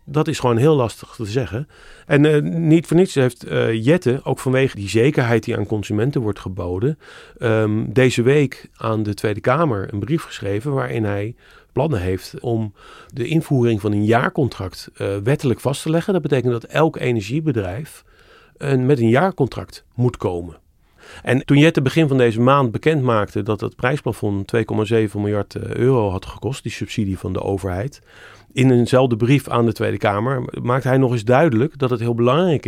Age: 40-59